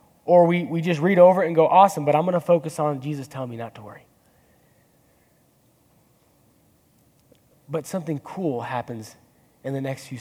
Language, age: English, 20-39